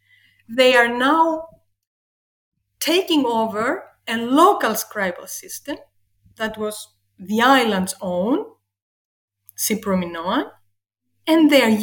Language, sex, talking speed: English, female, 90 wpm